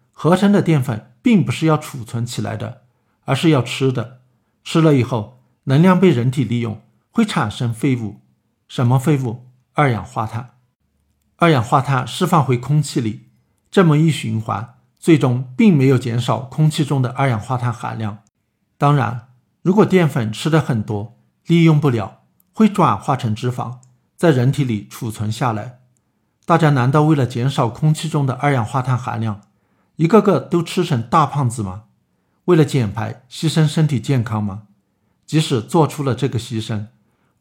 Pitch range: 115-150 Hz